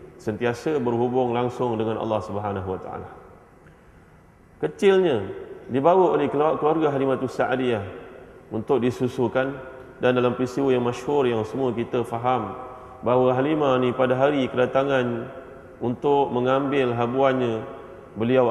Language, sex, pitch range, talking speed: Malay, male, 120-150 Hz, 110 wpm